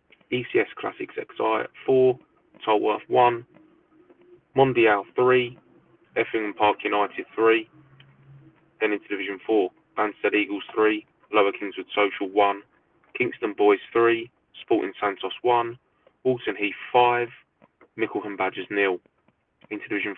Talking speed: 110 wpm